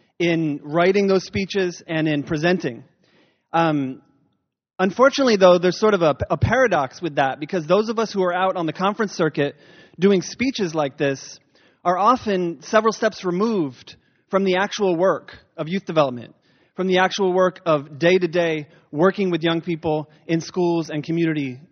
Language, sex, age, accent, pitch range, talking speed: English, male, 30-49, American, 160-195 Hz, 165 wpm